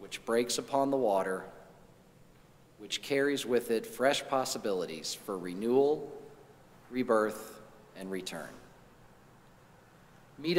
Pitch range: 105-140 Hz